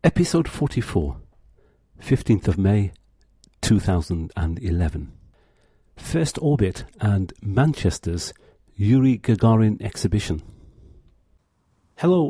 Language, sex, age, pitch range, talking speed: English, male, 50-69, 95-120 Hz, 70 wpm